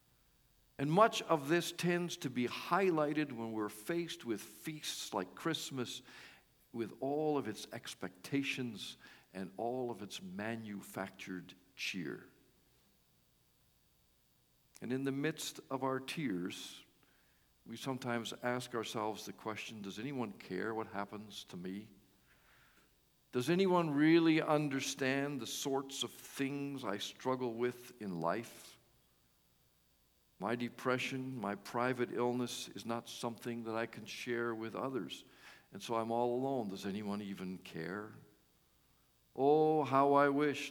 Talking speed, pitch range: 125 wpm, 100-140 Hz